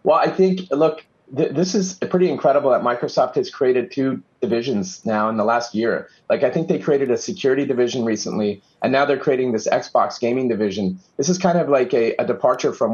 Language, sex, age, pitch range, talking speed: English, male, 30-49, 115-145 Hz, 215 wpm